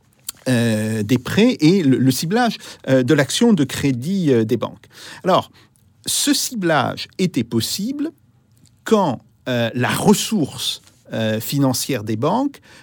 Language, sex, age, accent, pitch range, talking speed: French, male, 50-69, French, 120-175 Hz, 130 wpm